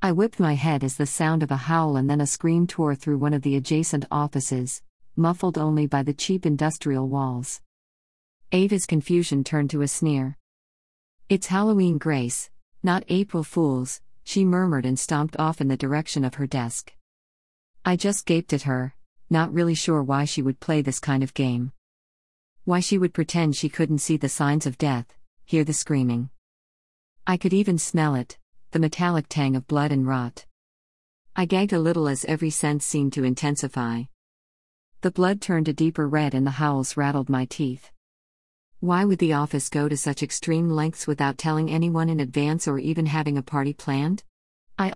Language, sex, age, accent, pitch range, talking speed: English, female, 40-59, American, 135-165 Hz, 180 wpm